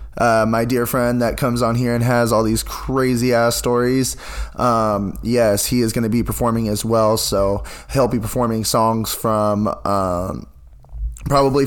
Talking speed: 165 wpm